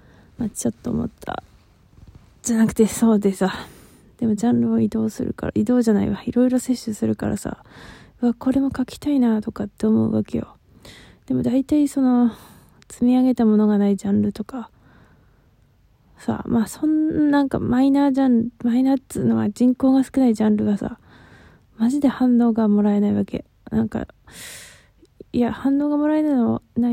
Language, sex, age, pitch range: Japanese, female, 20-39, 215-255 Hz